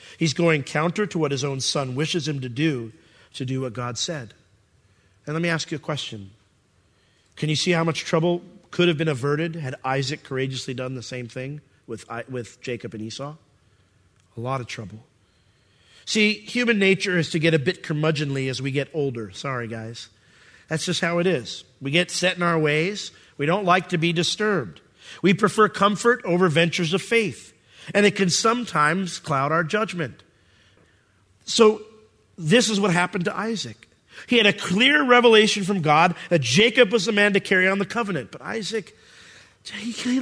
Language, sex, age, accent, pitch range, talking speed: English, male, 40-59, American, 130-220 Hz, 185 wpm